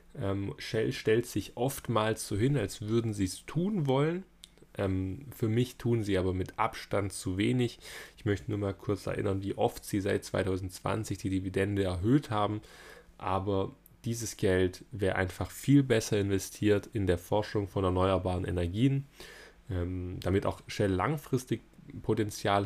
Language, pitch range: German, 95-125 Hz